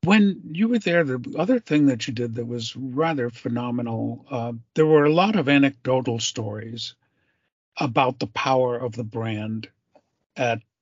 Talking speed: 160 wpm